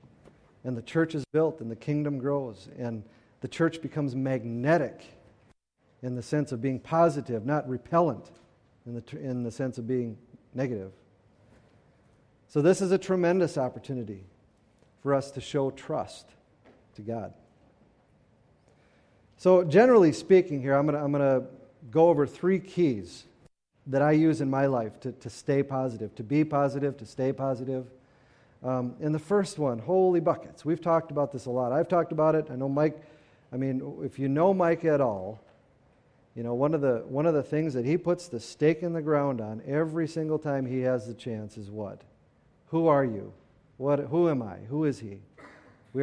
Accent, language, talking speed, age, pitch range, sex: American, English, 180 wpm, 40-59, 120-155 Hz, male